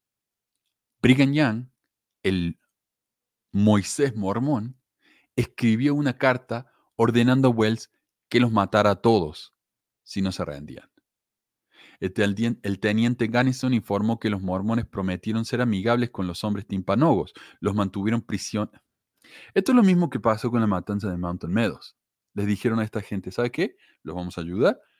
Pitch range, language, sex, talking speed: 95-120 Hz, Spanish, male, 145 wpm